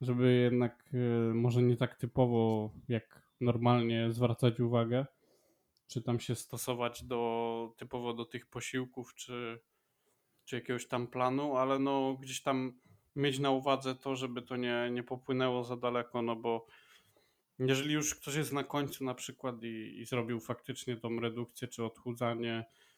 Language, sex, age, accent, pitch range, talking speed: Polish, male, 20-39, native, 120-130 Hz, 145 wpm